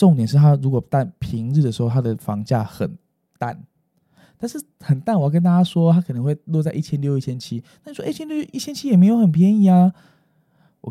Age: 20-39